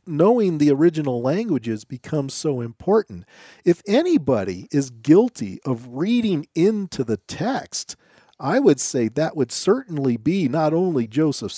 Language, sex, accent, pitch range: English, male, American, 135-190 Hz